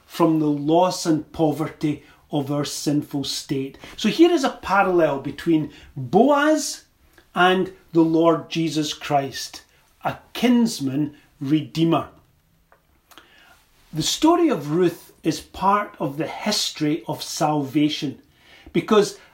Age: 40-59